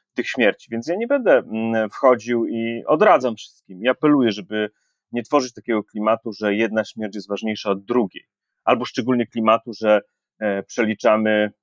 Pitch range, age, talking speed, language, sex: 105-145 Hz, 30-49, 150 wpm, Polish, male